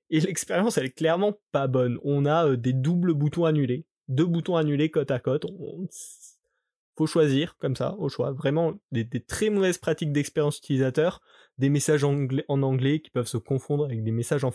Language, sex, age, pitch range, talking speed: French, male, 20-39, 135-185 Hz, 200 wpm